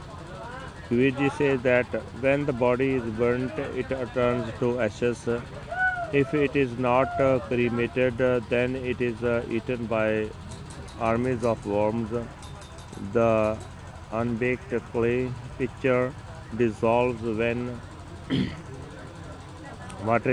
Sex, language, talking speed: male, Punjabi, 105 wpm